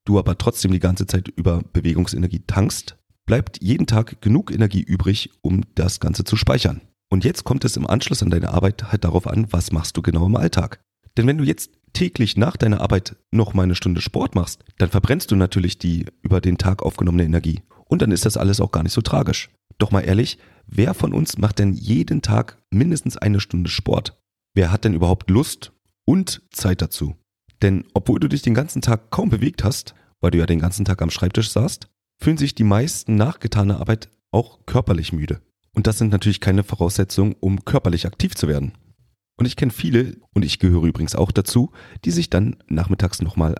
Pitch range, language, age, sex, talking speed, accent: 90-115 Hz, German, 40-59, male, 205 wpm, German